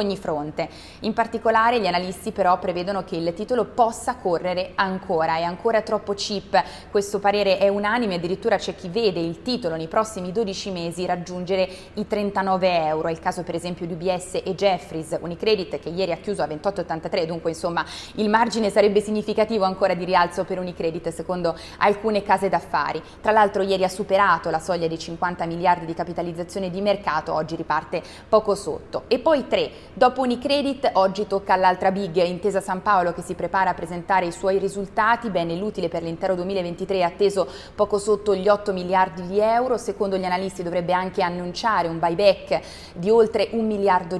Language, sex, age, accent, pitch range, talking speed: Italian, female, 20-39, native, 175-210 Hz, 175 wpm